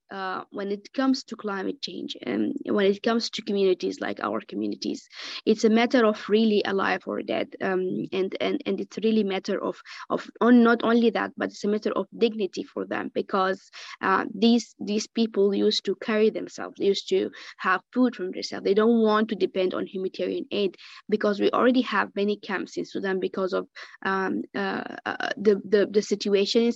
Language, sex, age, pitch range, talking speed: English, female, 20-39, 195-230 Hz, 195 wpm